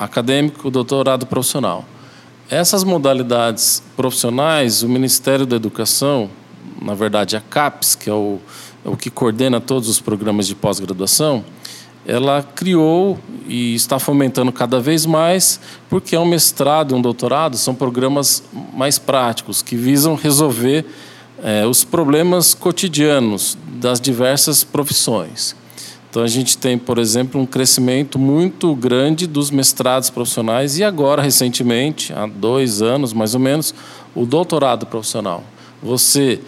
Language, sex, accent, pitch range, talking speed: Portuguese, male, Brazilian, 120-145 Hz, 130 wpm